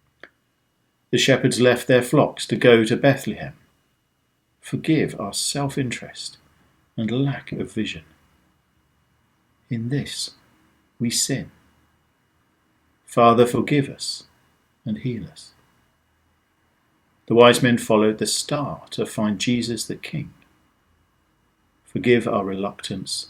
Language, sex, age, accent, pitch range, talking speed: English, male, 50-69, British, 95-130 Hz, 105 wpm